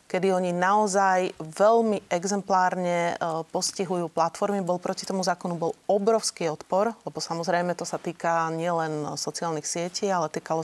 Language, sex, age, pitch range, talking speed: Slovak, female, 30-49, 165-190 Hz, 135 wpm